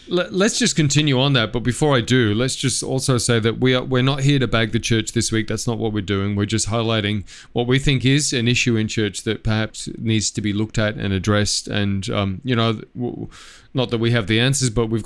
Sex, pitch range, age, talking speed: male, 105-130 Hz, 30-49, 245 wpm